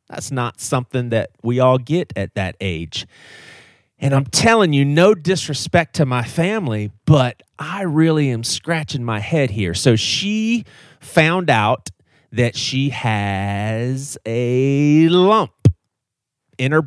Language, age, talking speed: English, 30-49, 135 wpm